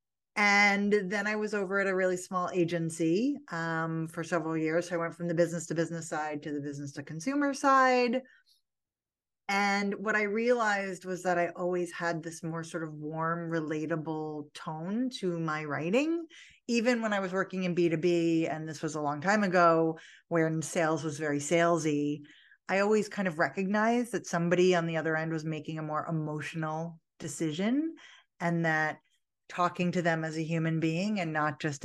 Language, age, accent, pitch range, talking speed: English, 30-49, American, 160-205 Hz, 180 wpm